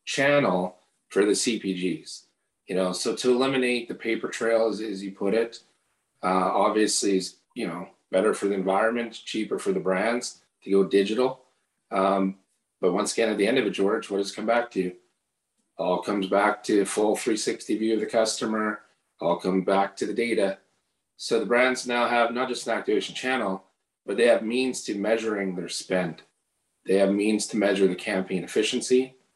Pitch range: 95-115 Hz